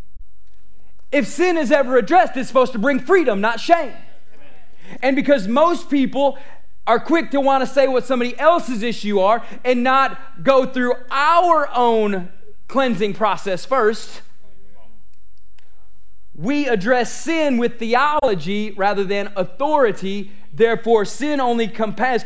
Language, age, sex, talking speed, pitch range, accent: English, 30-49, male, 125 wpm, 190-255 Hz, American